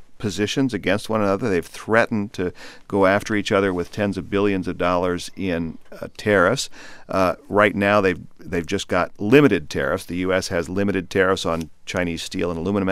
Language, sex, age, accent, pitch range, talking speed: English, male, 50-69, American, 90-105 Hz, 180 wpm